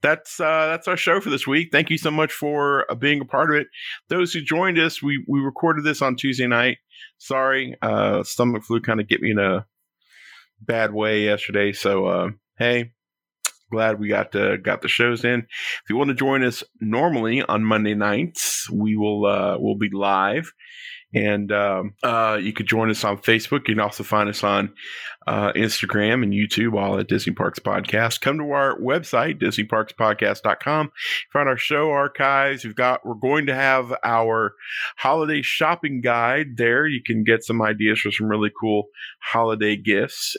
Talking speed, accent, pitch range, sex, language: 185 wpm, American, 105-140 Hz, male, English